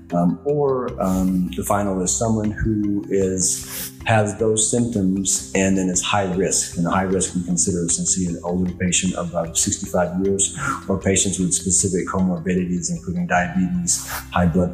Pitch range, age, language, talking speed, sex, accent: 85-100 Hz, 30-49, English, 160 wpm, male, American